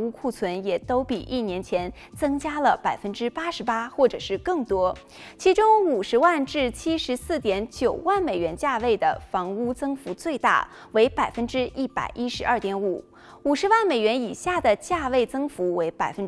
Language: Chinese